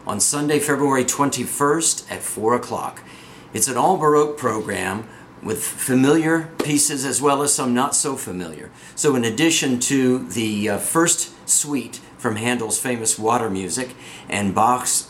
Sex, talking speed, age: male, 145 wpm, 50-69